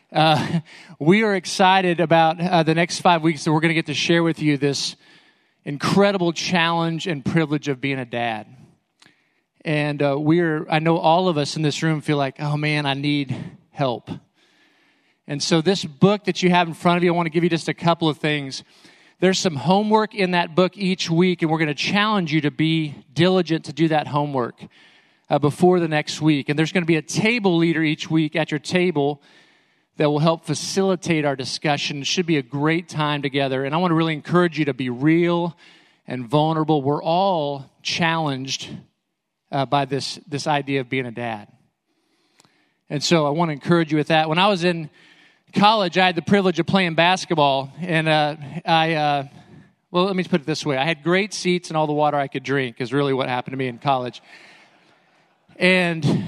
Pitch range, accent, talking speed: 145-180 Hz, American, 210 wpm